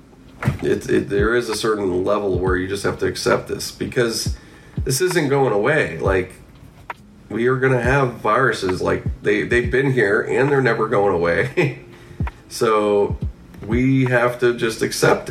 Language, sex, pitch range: English, male, 105-130 Hz